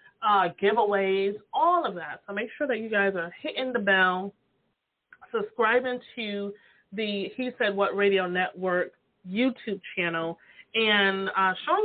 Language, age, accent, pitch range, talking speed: English, 30-49, American, 185-240 Hz, 140 wpm